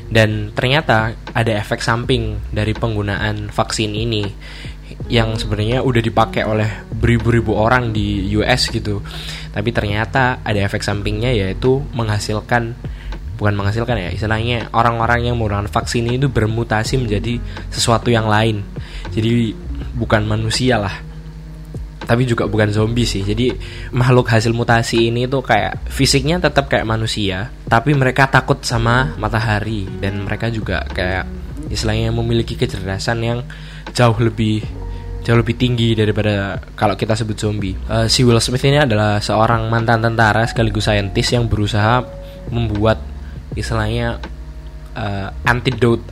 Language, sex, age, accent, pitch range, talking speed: Indonesian, male, 10-29, native, 105-120 Hz, 130 wpm